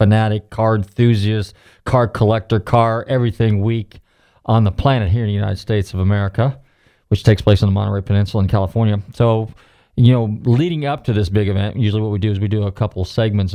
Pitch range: 100-120 Hz